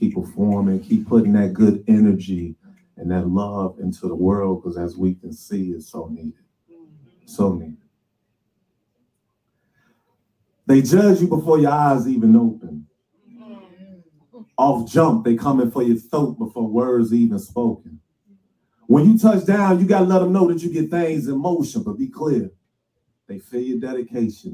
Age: 40-59